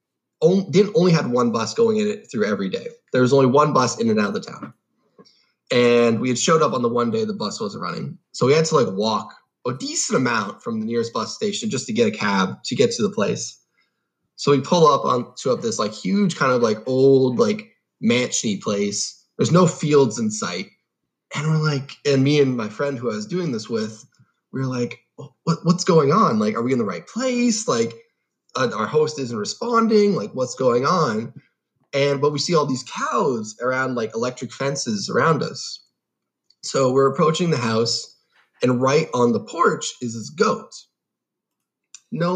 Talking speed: 210 wpm